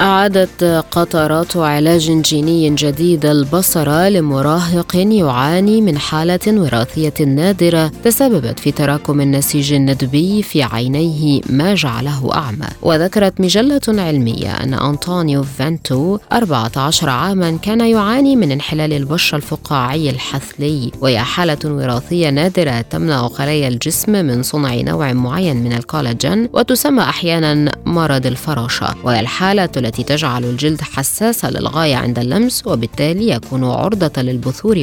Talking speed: 115 wpm